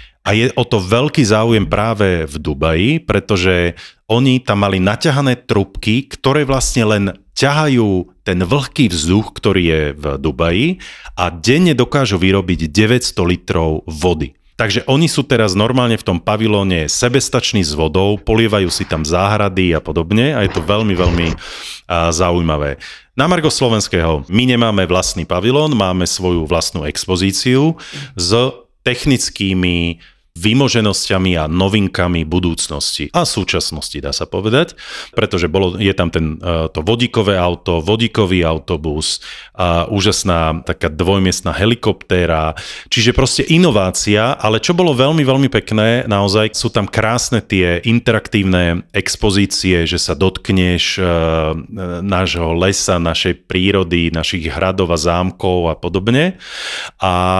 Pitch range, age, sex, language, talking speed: 85-115 Hz, 40-59, male, Slovak, 130 wpm